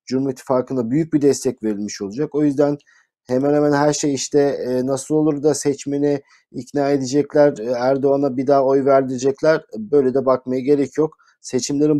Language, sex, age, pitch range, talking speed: Turkish, male, 50-69, 125-145 Hz, 155 wpm